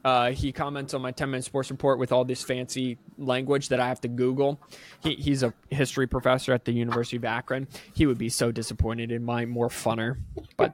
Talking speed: 205 wpm